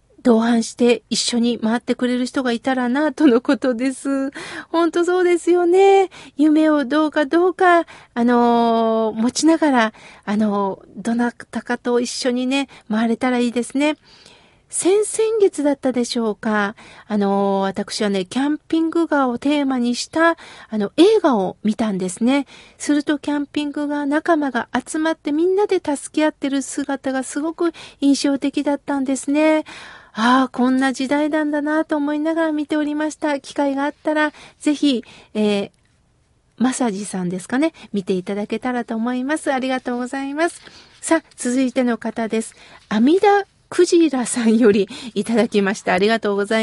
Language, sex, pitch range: Japanese, female, 225-305 Hz